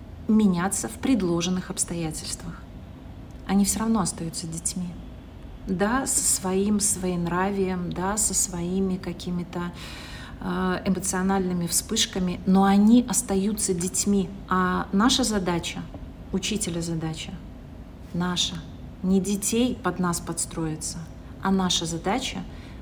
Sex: female